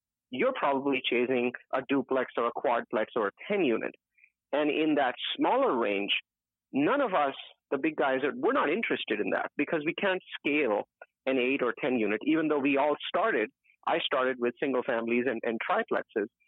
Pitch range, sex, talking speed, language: 125-165 Hz, male, 180 wpm, English